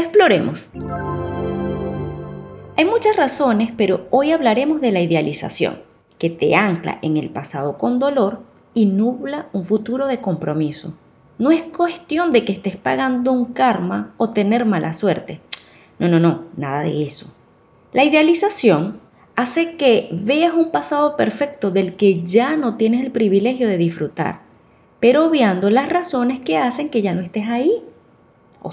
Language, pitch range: Spanish, 180-285 Hz